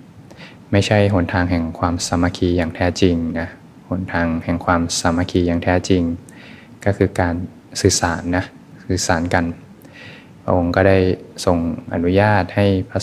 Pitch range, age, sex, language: 85-95 Hz, 20-39, male, Thai